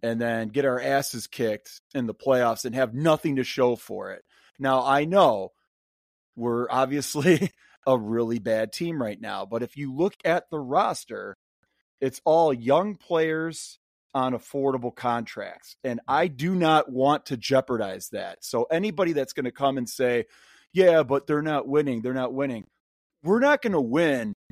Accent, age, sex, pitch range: American, 30-49, male, 125-160 Hz